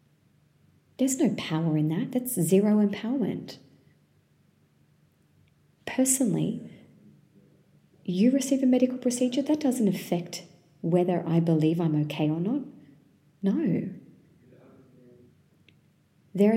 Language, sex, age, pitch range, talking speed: English, female, 30-49, 160-205 Hz, 95 wpm